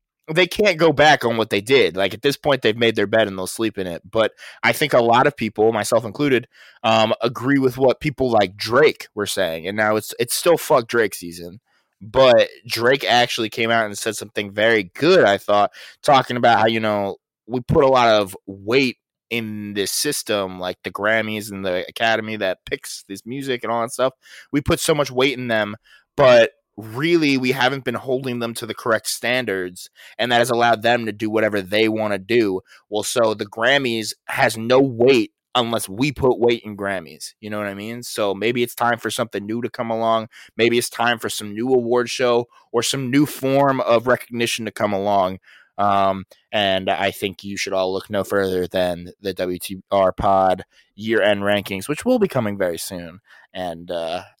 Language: English